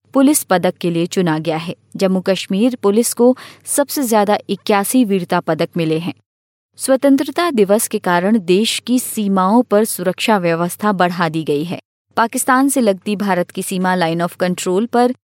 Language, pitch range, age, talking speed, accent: Hindi, 180-230 Hz, 30-49, 165 wpm, native